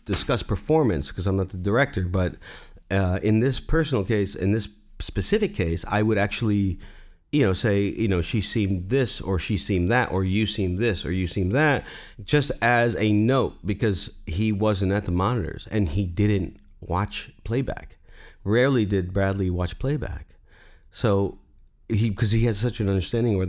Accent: American